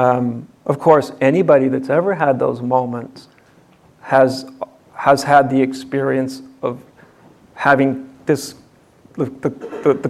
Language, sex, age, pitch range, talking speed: English, male, 50-69, 130-150 Hz, 120 wpm